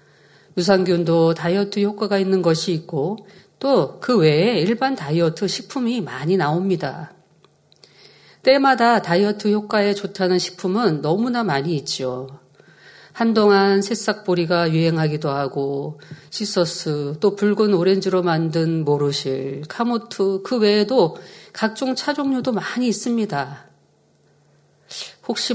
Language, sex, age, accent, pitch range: Korean, female, 40-59, native, 160-215 Hz